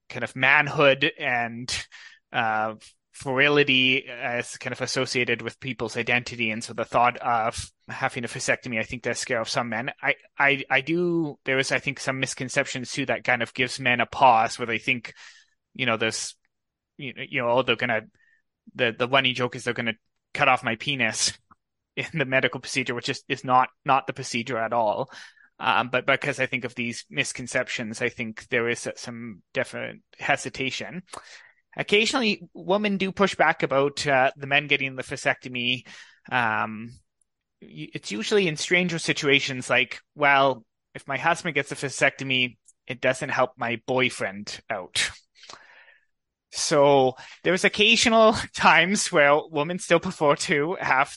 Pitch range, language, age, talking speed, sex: 120-145 Hz, English, 20-39, 165 wpm, male